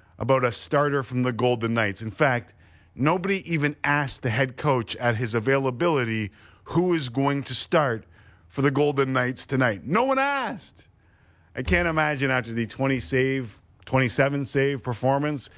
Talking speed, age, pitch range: 160 wpm, 40-59, 110-145 Hz